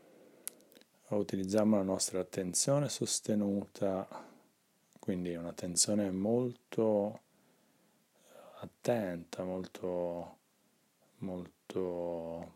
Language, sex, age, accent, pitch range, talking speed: Italian, male, 30-49, native, 90-115 Hz, 55 wpm